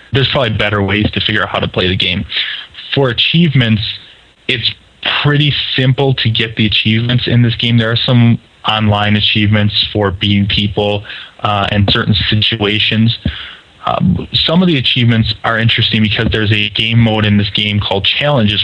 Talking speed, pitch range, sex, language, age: 170 wpm, 105-120 Hz, male, English, 20-39